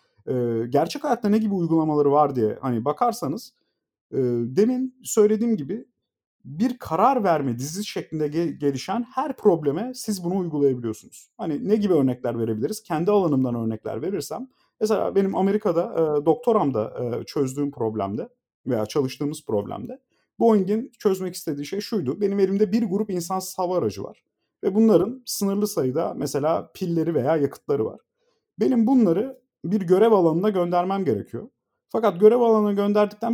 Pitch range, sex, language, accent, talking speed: 150-225 Hz, male, Turkish, native, 135 wpm